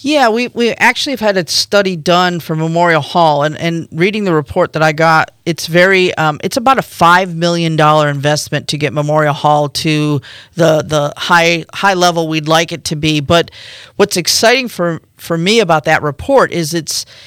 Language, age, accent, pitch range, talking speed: English, 40-59, American, 155-180 Hz, 195 wpm